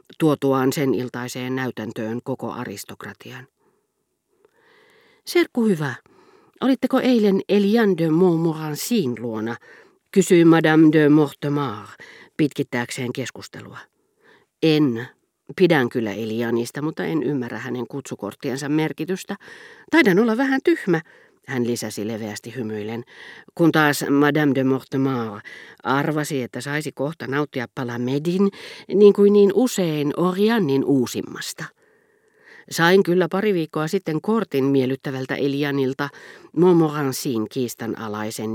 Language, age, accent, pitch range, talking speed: Finnish, 50-69, native, 125-195 Hz, 105 wpm